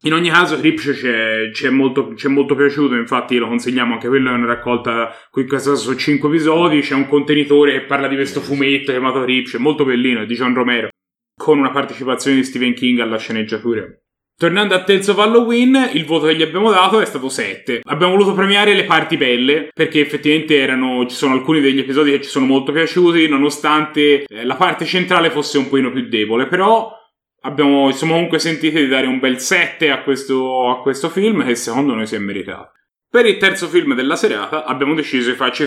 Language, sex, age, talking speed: Italian, male, 30-49, 195 wpm